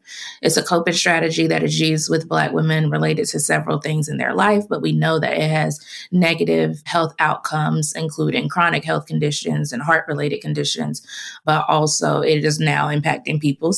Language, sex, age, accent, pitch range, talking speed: English, female, 20-39, American, 145-170 Hz, 180 wpm